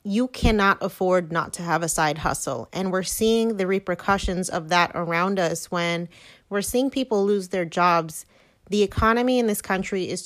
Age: 30-49